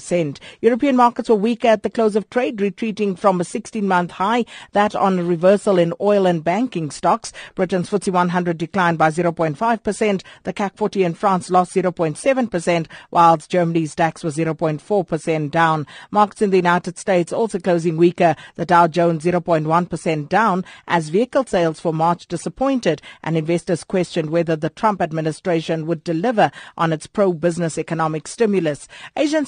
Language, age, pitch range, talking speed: English, 50-69, 170-210 Hz, 155 wpm